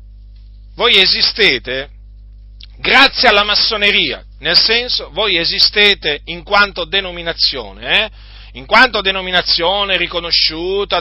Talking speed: 95 wpm